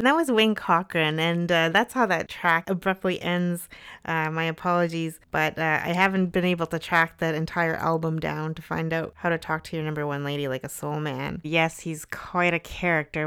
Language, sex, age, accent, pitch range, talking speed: English, female, 30-49, American, 150-175 Hz, 215 wpm